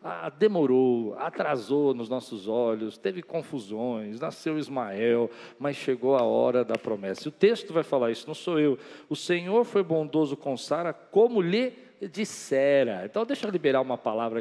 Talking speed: 165 wpm